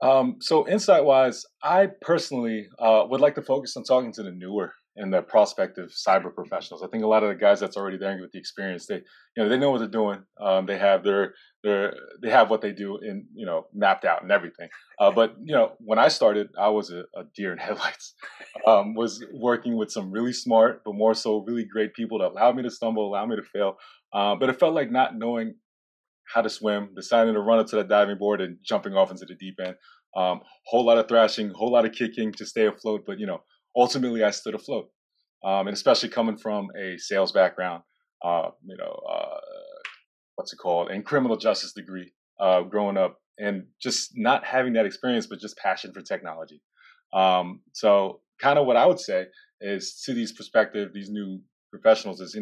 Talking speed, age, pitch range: 215 wpm, 20-39, 100-130 Hz